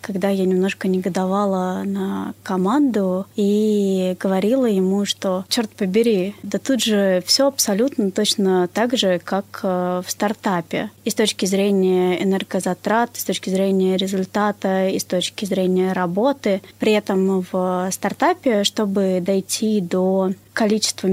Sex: female